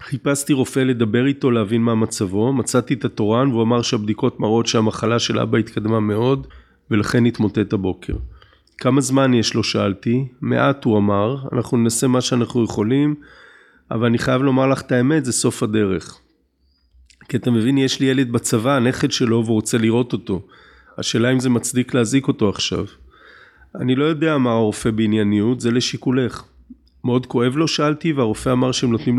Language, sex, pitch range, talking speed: Hebrew, male, 110-130 Hz, 165 wpm